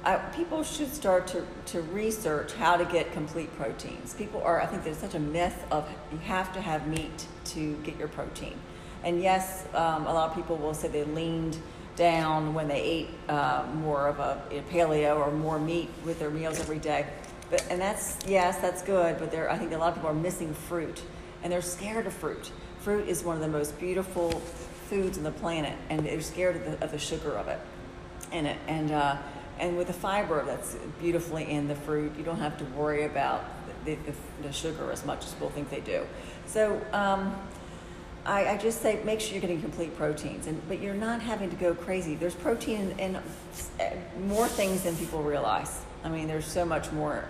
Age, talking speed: 40-59, 210 wpm